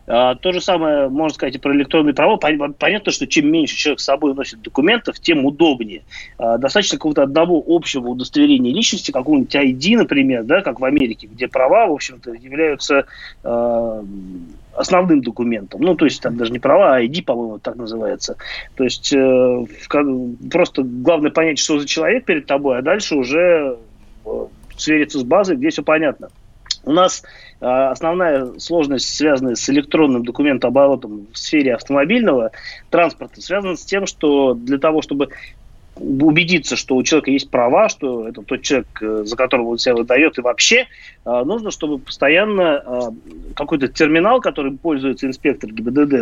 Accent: native